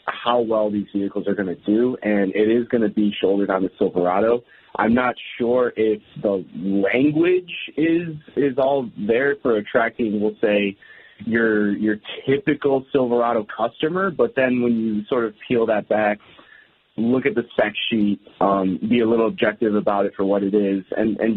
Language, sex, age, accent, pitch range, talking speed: English, male, 30-49, American, 100-125 Hz, 180 wpm